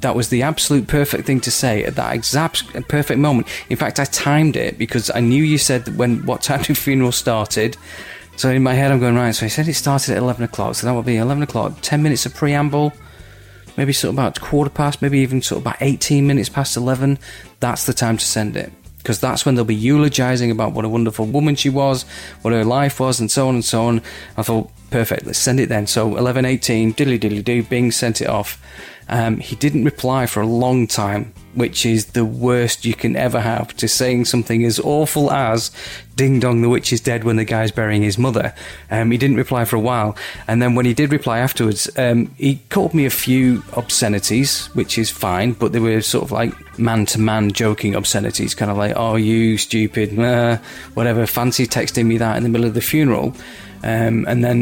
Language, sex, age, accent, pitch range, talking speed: English, male, 30-49, British, 110-130 Hz, 230 wpm